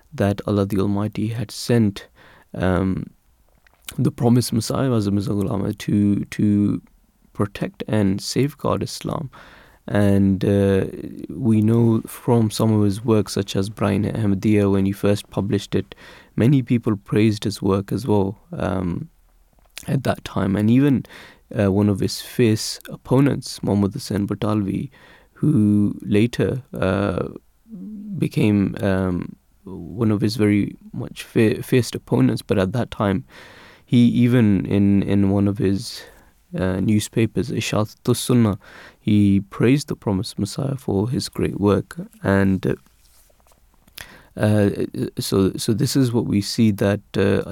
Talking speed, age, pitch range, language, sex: 135 wpm, 20-39, 100-120 Hz, English, male